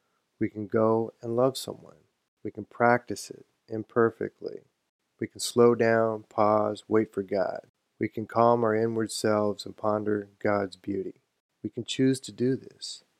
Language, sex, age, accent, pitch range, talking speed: English, male, 40-59, American, 105-120 Hz, 160 wpm